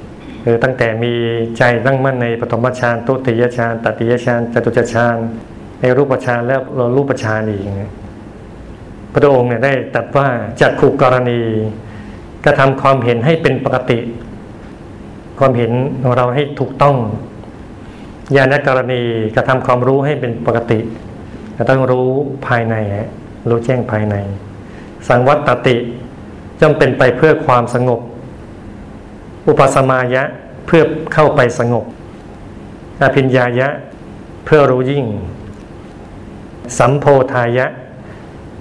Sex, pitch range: male, 115-135 Hz